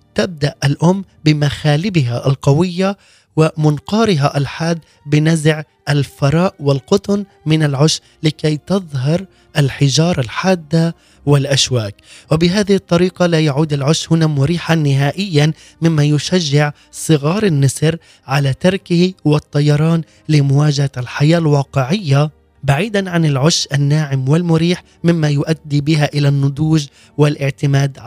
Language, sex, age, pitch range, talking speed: Arabic, male, 20-39, 140-165 Hz, 95 wpm